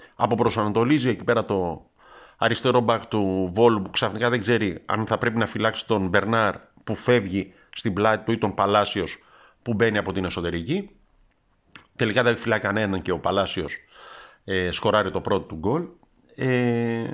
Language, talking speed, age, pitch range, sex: Greek, 170 wpm, 50-69, 95-120 Hz, male